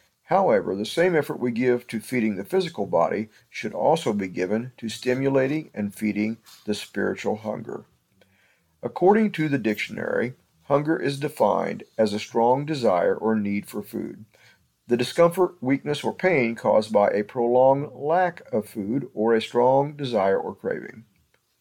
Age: 50-69